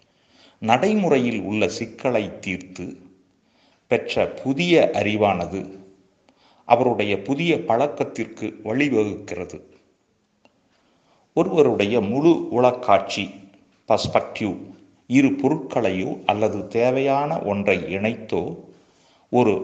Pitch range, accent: 100-135 Hz, native